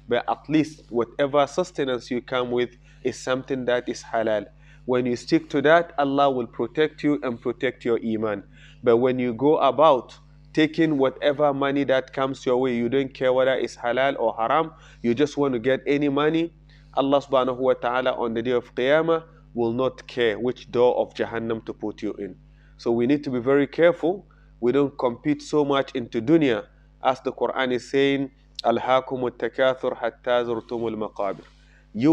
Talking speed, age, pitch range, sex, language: 175 wpm, 30-49, 120-145 Hz, male, English